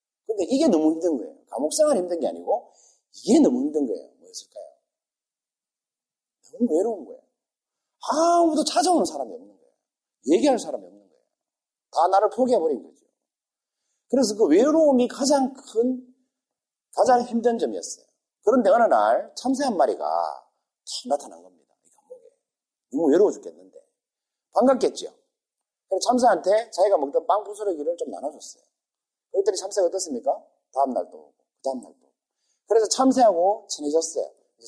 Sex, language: male, Korean